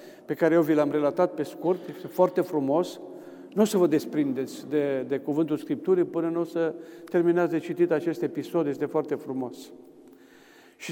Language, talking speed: Romanian, 180 wpm